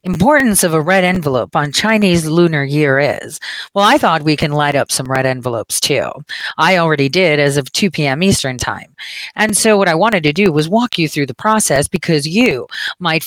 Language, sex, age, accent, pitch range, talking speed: English, female, 40-59, American, 160-225 Hz, 210 wpm